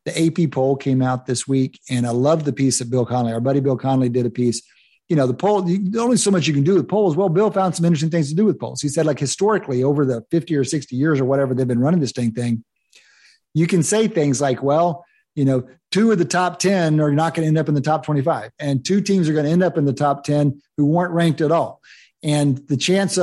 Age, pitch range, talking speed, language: 50-69, 130-170 Hz, 275 wpm, English